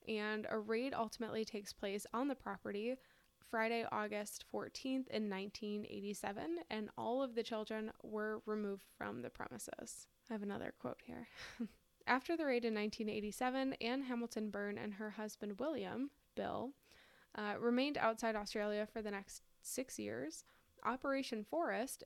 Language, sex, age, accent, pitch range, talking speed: English, female, 10-29, American, 210-250 Hz, 140 wpm